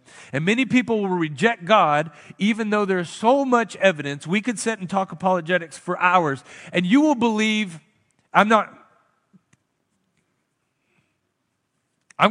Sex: male